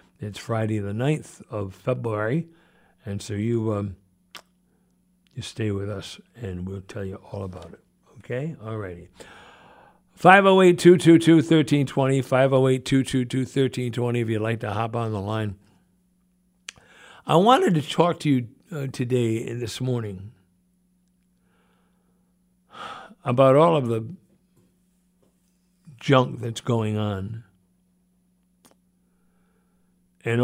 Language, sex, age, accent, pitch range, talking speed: English, male, 60-79, American, 110-180 Hz, 105 wpm